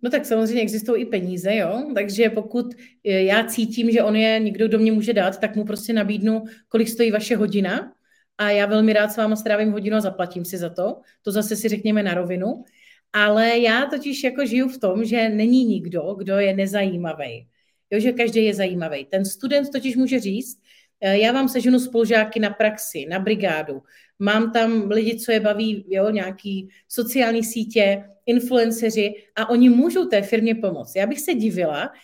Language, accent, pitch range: Czech, native, 200-235 Hz